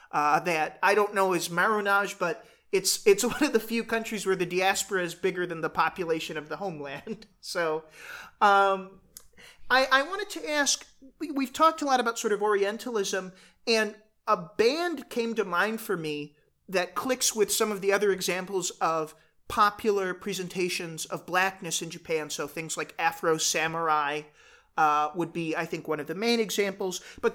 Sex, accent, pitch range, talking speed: male, American, 185-255 Hz, 175 wpm